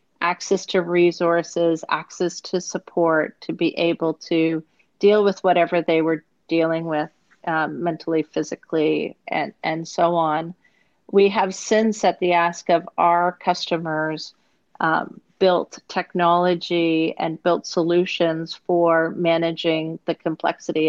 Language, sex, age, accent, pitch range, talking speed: English, female, 40-59, American, 165-180 Hz, 125 wpm